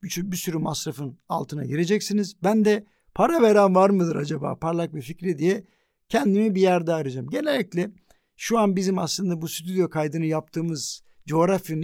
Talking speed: 150 wpm